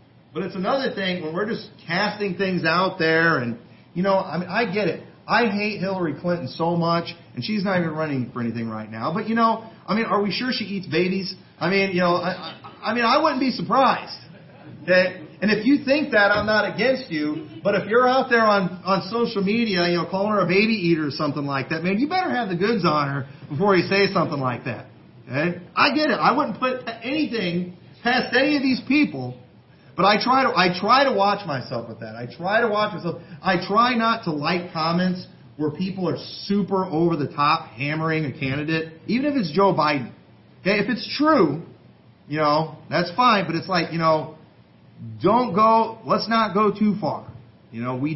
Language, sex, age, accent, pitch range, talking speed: English, male, 40-59, American, 155-215 Hz, 215 wpm